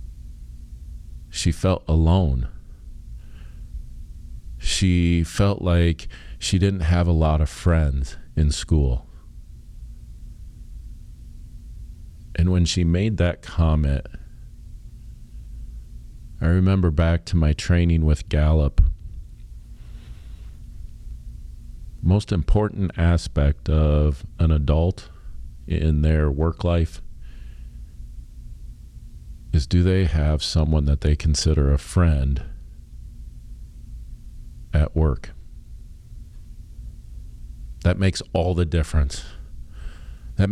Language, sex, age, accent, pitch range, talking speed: English, male, 40-59, American, 75-90 Hz, 85 wpm